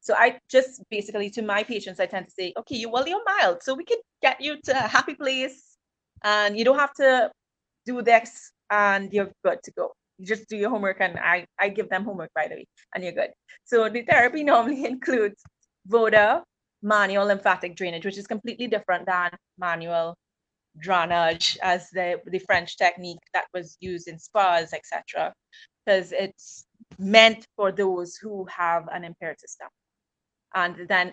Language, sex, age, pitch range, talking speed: English, female, 20-39, 180-225 Hz, 180 wpm